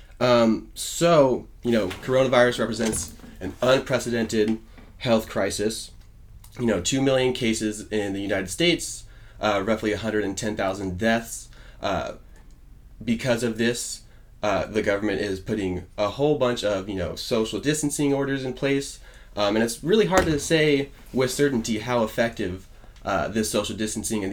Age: 30-49